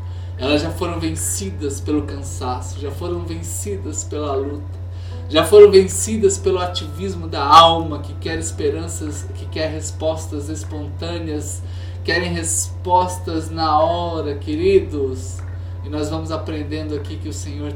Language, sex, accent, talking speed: Portuguese, male, Brazilian, 130 wpm